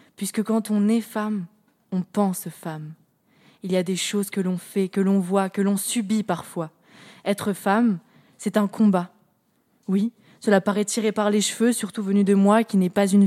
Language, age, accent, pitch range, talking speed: French, 20-39, French, 185-220 Hz, 195 wpm